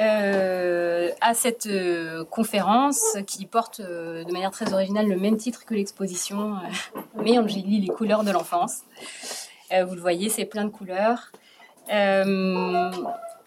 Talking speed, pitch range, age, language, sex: 150 wpm, 185-225 Hz, 30-49, French, female